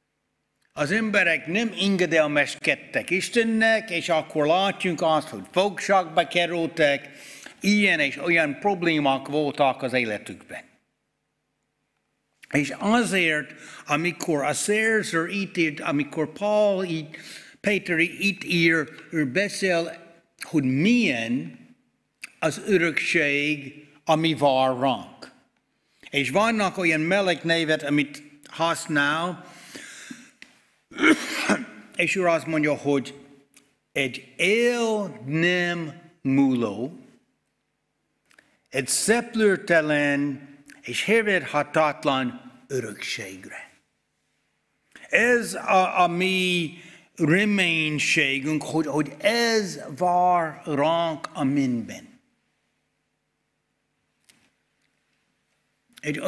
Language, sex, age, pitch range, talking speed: Hungarian, male, 60-79, 150-190 Hz, 80 wpm